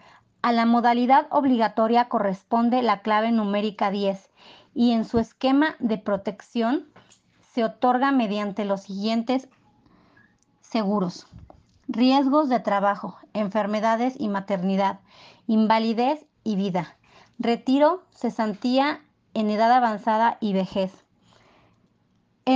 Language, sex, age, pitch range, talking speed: Spanish, female, 30-49, 205-245 Hz, 100 wpm